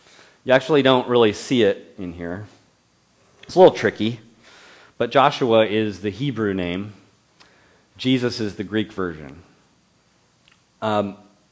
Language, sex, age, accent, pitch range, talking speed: English, male, 40-59, American, 95-120 Hz, 125 wpm